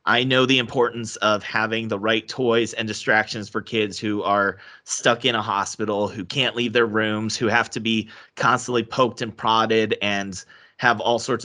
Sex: male